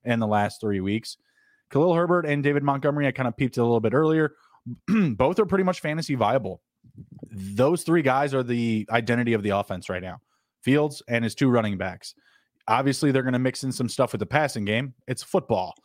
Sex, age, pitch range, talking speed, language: male, 20-39, 110-135 Hz, 210 wpm, English